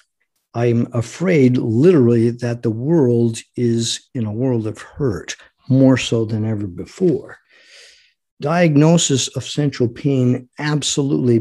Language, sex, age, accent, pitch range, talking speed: English, male, 50-69, American, 120-150 Hz, 115 wpm